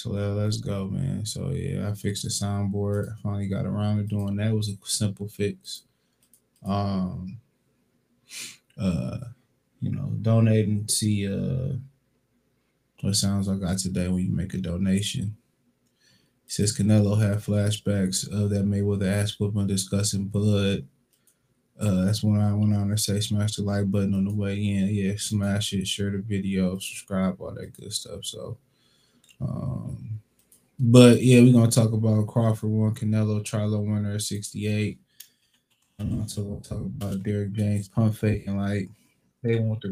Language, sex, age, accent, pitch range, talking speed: English, male, 20-39, American, 100-115 Hz, 160 wpm